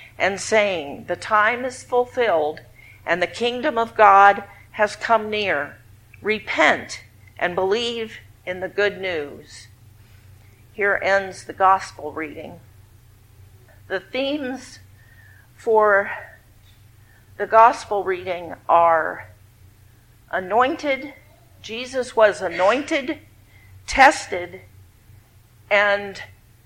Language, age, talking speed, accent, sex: English, 50-69, 90 wpm, American, female